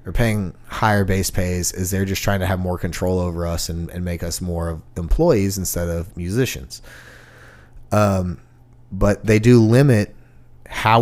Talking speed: 170 wpm